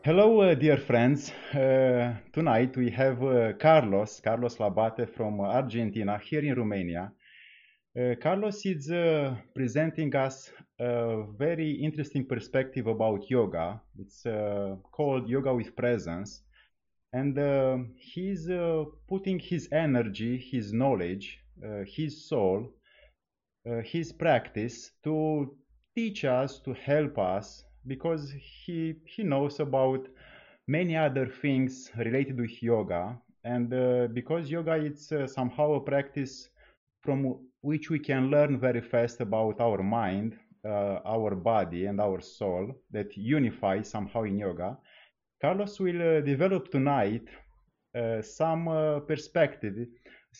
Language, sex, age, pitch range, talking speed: Romanian, male, 30-49, 115-150 Hz, 125 wpm